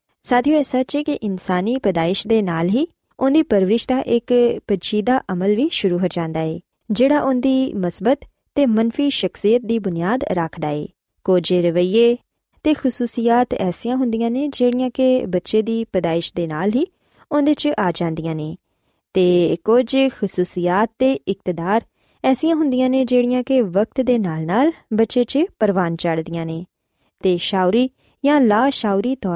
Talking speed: 125 wpm